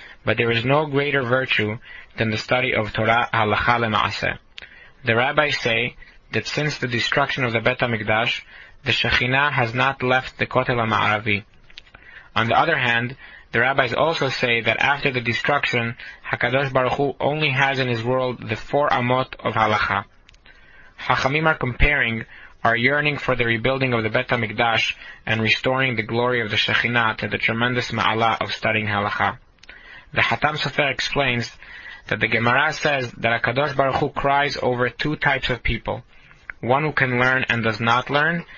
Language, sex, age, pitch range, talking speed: English, male, 20-39, 115-140 Hz, 170 wpm